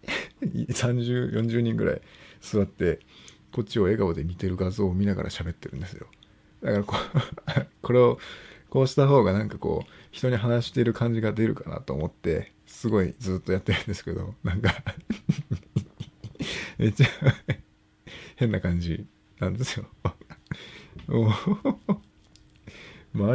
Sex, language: male, Japanese